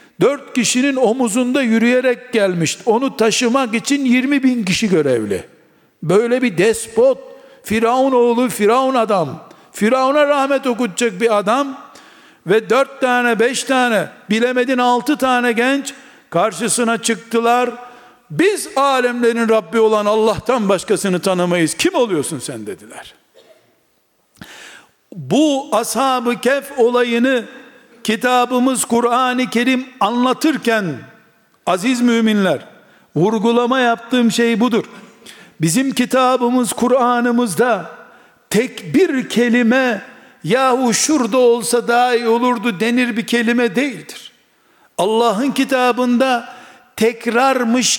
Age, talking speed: 60-79, 100 wpm